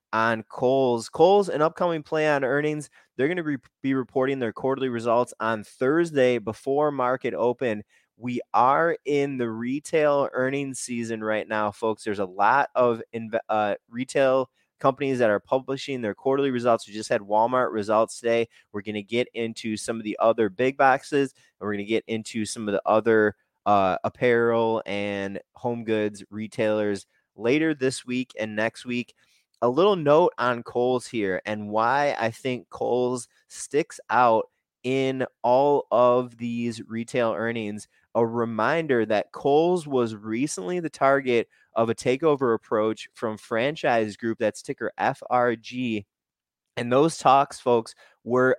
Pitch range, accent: 110-130 Hz, American